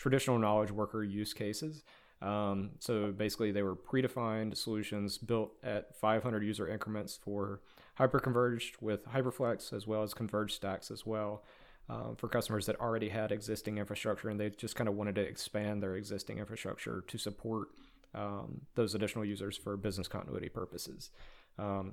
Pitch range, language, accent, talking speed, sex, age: 105-115 Hz, English, American, 160 wpm, male, 30-49